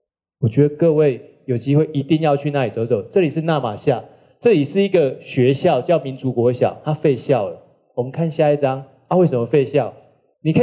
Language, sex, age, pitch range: Chinese, male, 30-49, 135-205 Hz